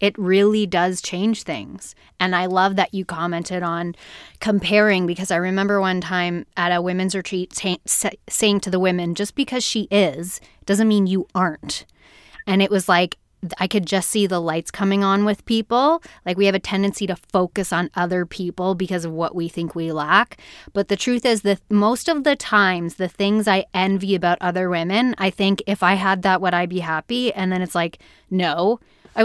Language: English